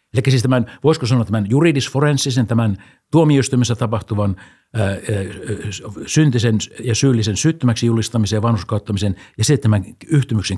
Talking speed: 120 wpm